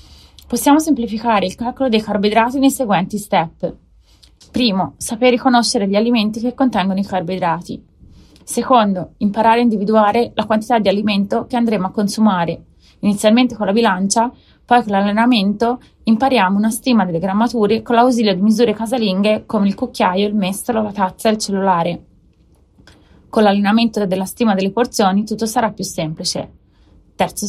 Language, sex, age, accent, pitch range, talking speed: Italian, female, 30-49, native, 190-235 Hz, 150 wpm